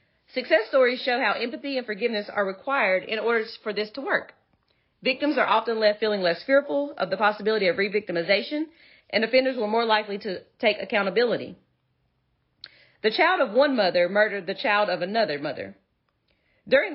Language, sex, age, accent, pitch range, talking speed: English, female, 40-59, American, 195-255 Hz, 165 wpm